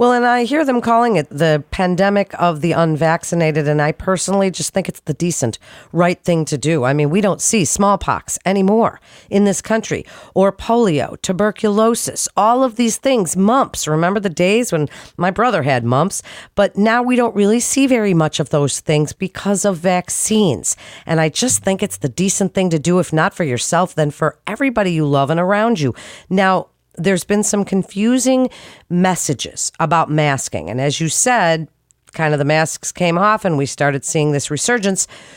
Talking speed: 185 wpm